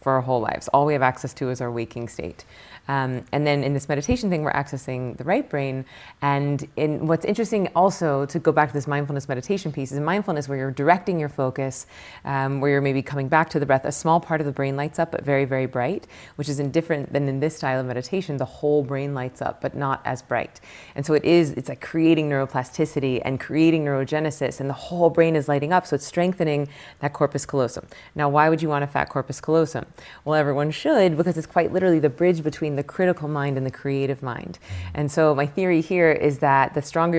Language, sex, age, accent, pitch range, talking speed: English, female, 30-49, American, 135-160 Hz, 235 wpm